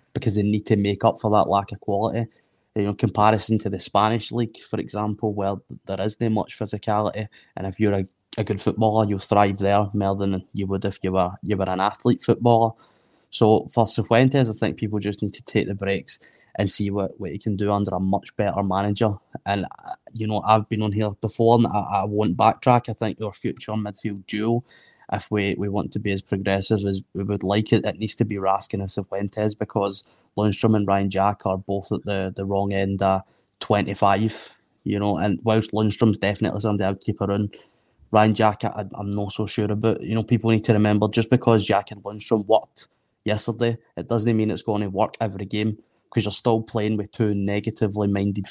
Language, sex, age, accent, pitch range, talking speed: English, male, 10-29, British, 100-110 Hz, 215 wpm